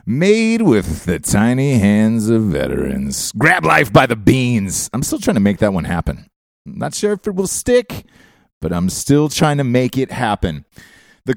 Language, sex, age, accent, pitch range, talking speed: English, male, 30-49, American, 100-145 Hz, 190 wpm